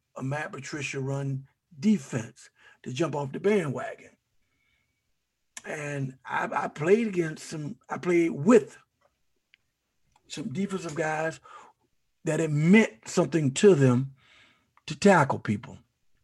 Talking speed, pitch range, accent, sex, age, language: 115 wpm, 150-205 Hz, American, male, 60-79, English